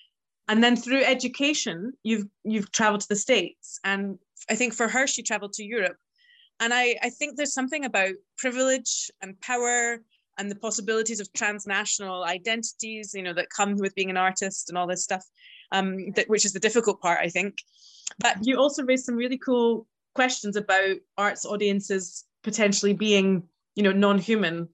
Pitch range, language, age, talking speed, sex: 185-230 Hz, English, 20-39, 175 wpm, female